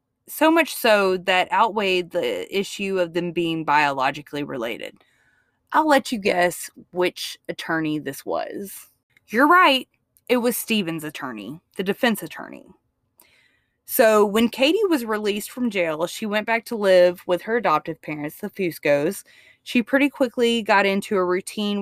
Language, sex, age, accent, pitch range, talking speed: English, female, 20-39, American, 160-220 Hz, 150 wpm